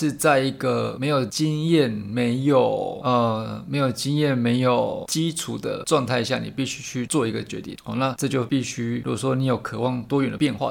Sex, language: male, Chinese